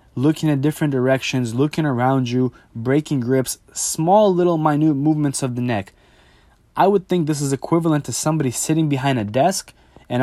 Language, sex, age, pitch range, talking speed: English, male, 20-39, 120-155 Hz, 170 wpm